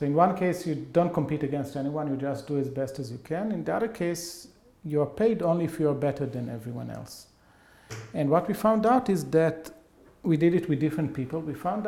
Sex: male